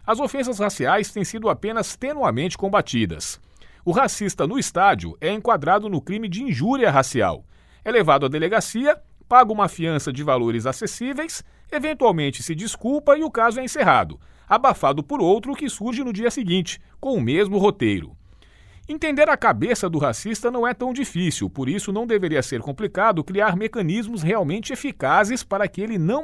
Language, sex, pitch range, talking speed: Portuguese, male, 165-250 Hz, 165 wpm